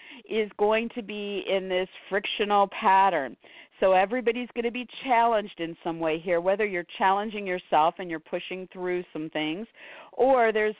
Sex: female